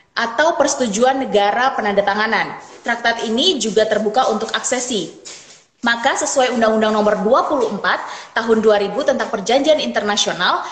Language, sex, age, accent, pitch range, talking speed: Indonesian, female, 20-39, native, 205-255 Hz, 110 wpm